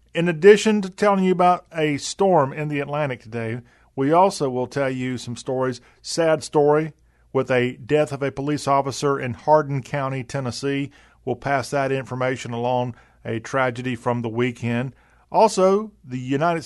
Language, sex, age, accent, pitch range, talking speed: English, male, 40-59, American, 125-155 Hz, 160 wpm